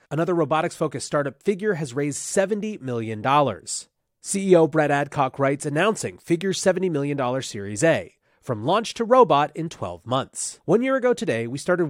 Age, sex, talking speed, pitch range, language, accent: 30-49, male, 155 wpm, 130-185 Hz, English, American